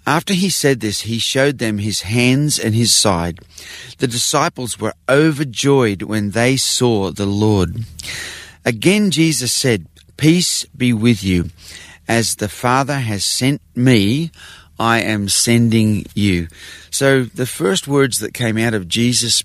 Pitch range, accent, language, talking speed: 95-125 Hz, Australian, English, 145 wpm